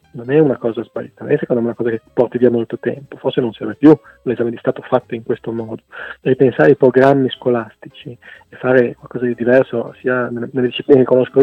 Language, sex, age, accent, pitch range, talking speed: Italian, male, 40-59, native, 120-140 Hz, 215 wpm